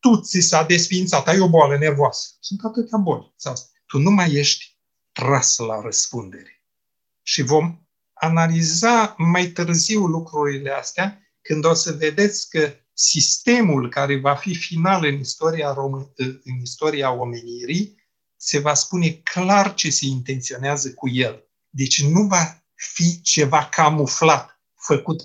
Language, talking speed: Romanian, 135 wpm